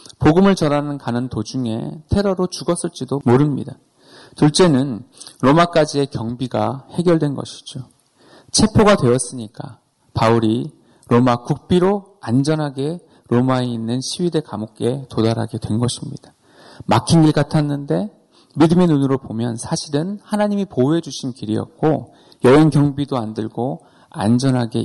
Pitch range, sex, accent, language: 115-155 Hz, male, native, Korean